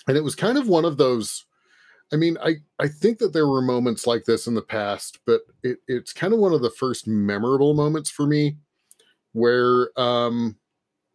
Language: English